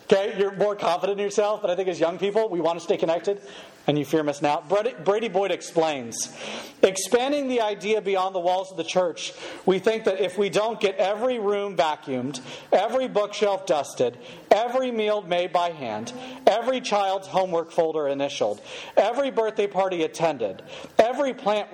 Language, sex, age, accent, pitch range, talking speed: English, male, 40-59, American, 170-220 Hz, 175 wpm